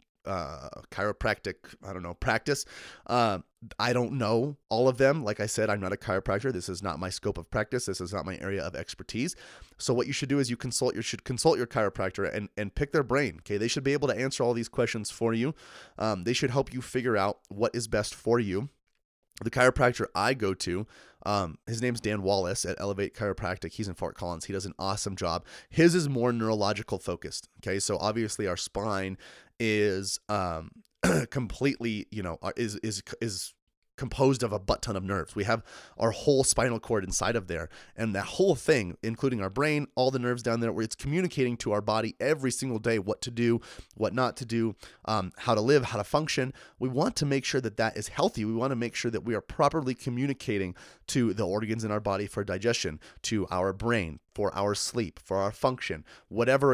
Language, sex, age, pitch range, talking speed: English, male, 30-49, 100-125 Hz, 215 wpm